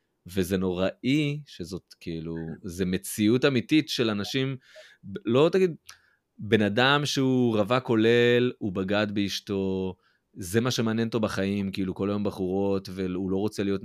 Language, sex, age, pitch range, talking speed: Hebrew, male, 30-49, 95-120 Hz, 140 wpm